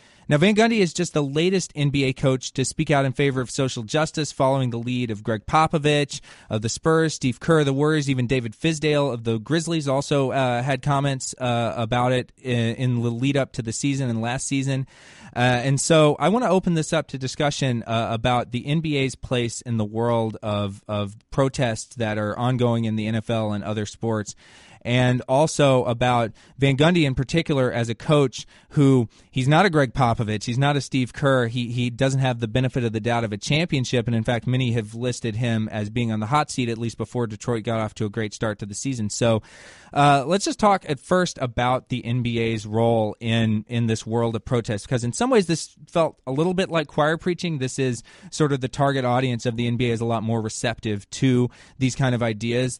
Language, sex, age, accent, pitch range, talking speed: English, male, 20-39, American, 115-145 Hz, 220 wpm